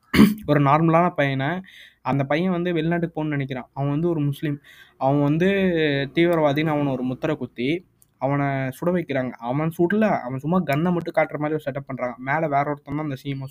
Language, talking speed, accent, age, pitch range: Tamil, 175 wpm, native, 20-39, 135-165 Hz